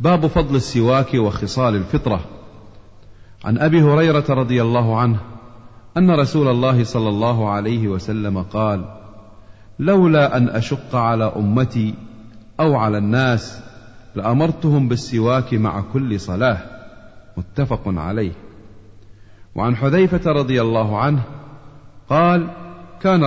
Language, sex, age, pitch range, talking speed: Arabic, male, 40-59, 105-145 Hz, 105 wpm